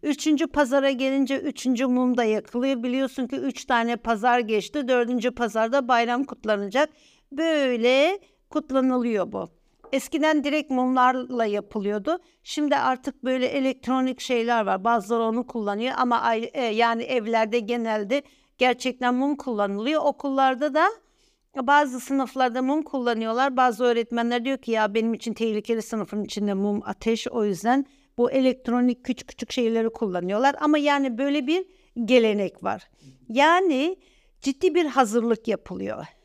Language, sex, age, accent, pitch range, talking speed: Turkish, female, 60-79, native, 240-290 Hz, 125 wpm